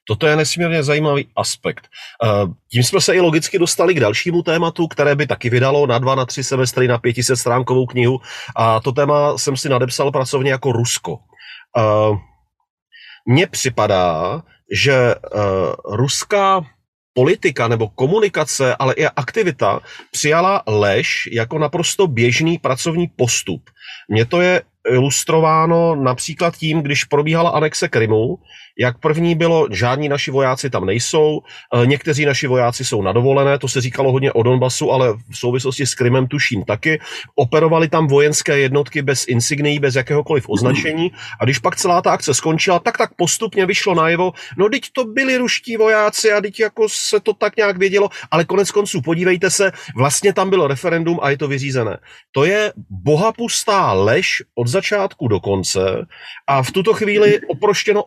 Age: 40-59